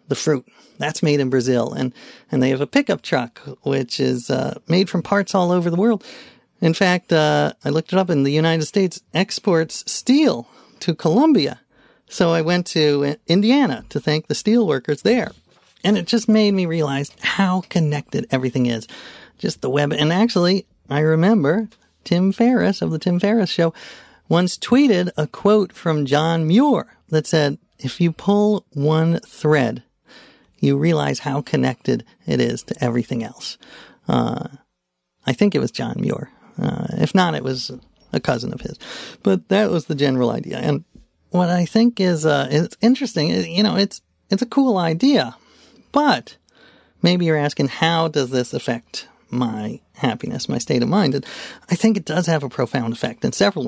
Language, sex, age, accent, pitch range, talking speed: English, male, 40-59, American, 145-200 Hz, 180 wpm